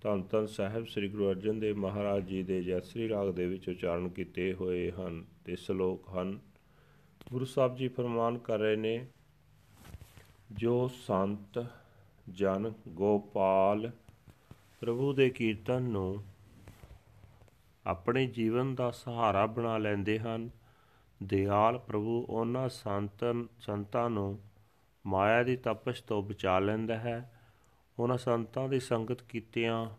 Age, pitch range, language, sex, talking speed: 40-59, 100-120 Hz, Punjabi, male, 125 wpm